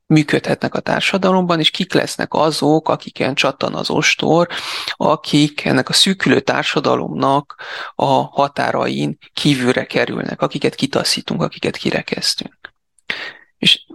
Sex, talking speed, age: male, 110 wpm, 30-49